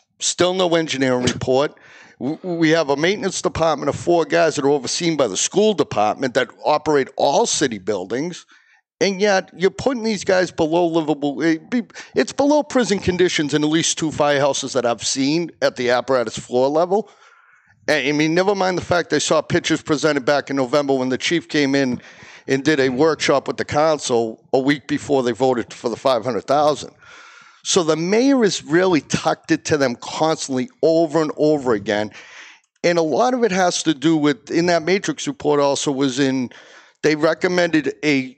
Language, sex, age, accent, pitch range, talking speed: English, male, 50-69, American, 135-170 Hz, 180 wpm